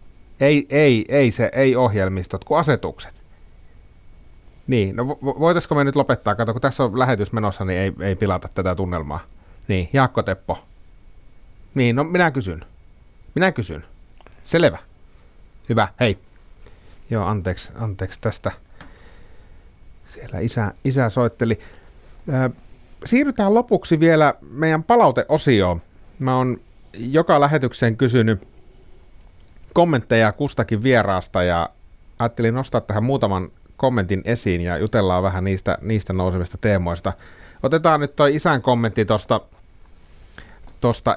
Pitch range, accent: 95-130 Hz, native